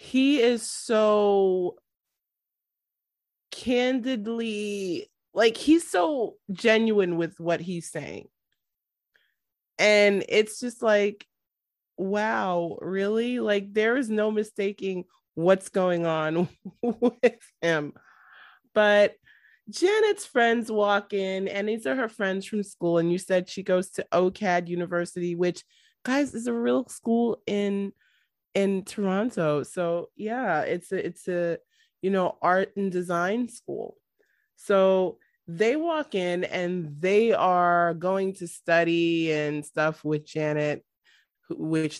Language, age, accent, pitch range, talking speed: English, 20-39, American, 170-225 Hz, 120 wpm